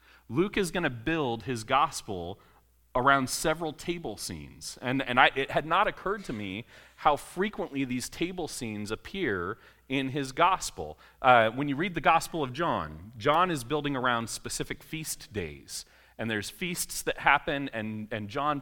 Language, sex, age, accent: English, male, 30-49, American